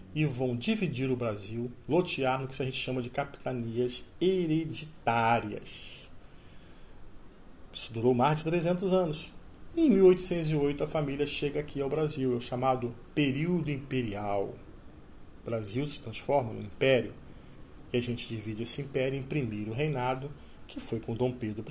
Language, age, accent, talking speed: Portuguese, 40-59, Brazilian, 145 wpm